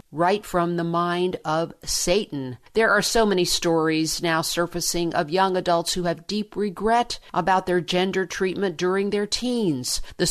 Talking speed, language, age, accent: 165 wpm, English, 50-69, American